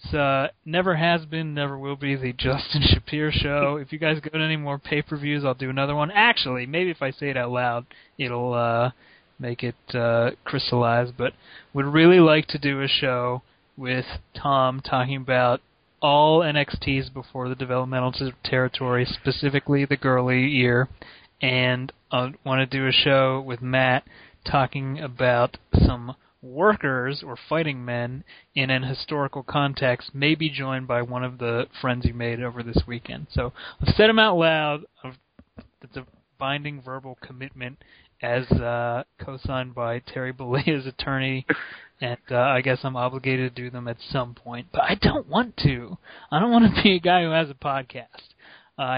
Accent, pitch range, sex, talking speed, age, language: American, 125-145 Hz, male, 170 wpm, 30-49, English